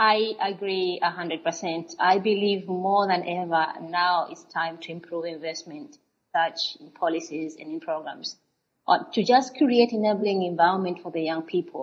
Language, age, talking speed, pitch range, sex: English, 30-49, 145 wpm, 170-215 Hz, female